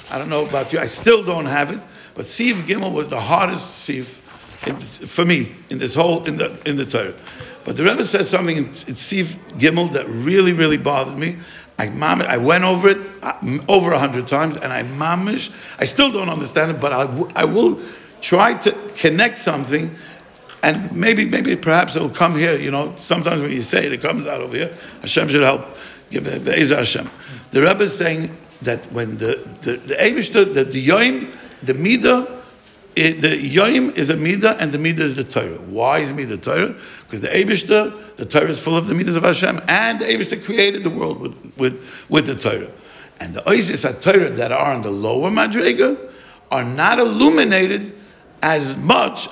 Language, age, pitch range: English, 60-79, 145-200 Hz